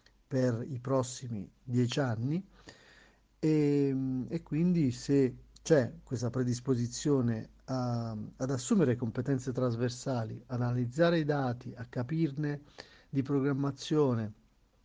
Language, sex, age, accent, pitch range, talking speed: Italian, male, 50-69, native, 120-140 Hz, 95 wpm